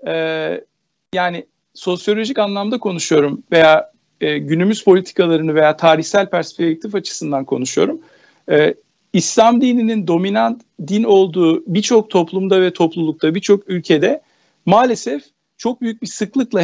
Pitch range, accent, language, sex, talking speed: 170-225 Hz, native, Turkish, male, 110 wpm